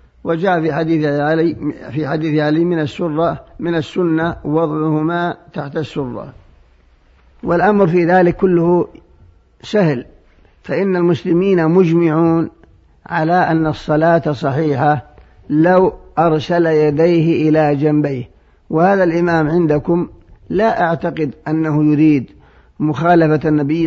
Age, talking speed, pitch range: 50-69, 100 wpm, 145-170 Hz